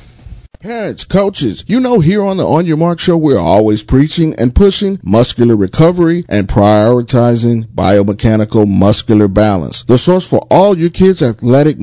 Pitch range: 125-180 Hz